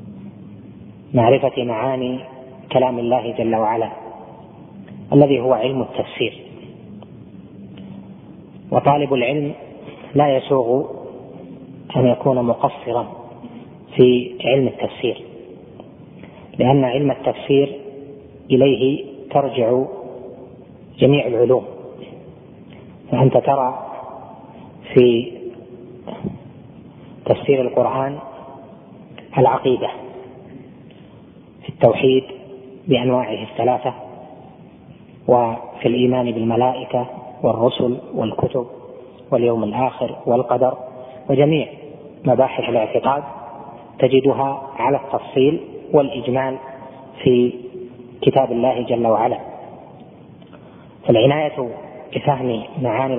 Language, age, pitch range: Arabic, 30-49, 125-135 Hz